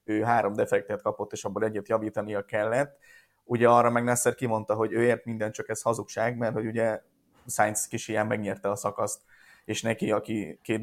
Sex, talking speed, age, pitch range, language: male, 185 wpm, 20-39, 110-130 Hz, Hungarian